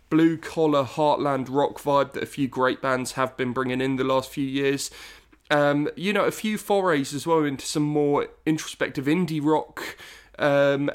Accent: British